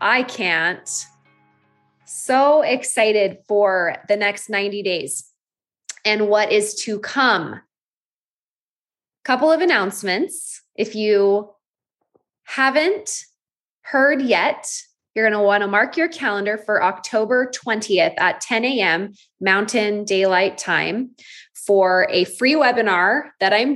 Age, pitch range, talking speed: 20-39, 205-260 Hz, 115 wpm